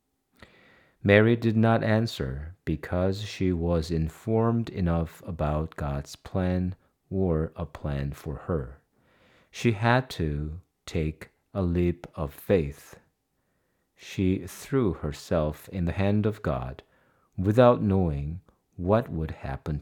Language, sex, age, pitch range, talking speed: English, male, 50-69, 75-100 Hz, 115 wpm